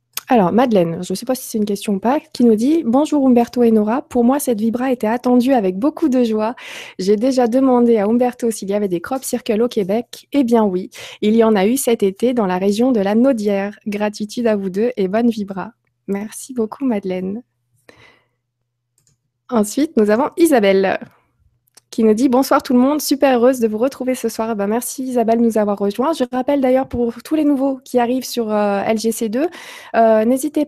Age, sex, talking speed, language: 20-39, female, 210 wpm, French